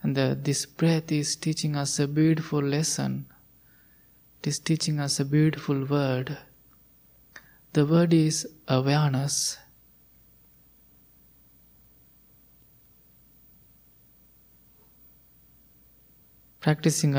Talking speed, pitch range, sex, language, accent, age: 75 wpm, 135-160 Hz, male, English, Indian, 20-39